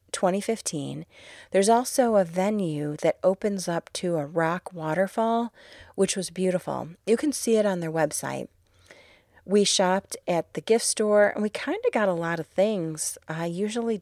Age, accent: 30-49, American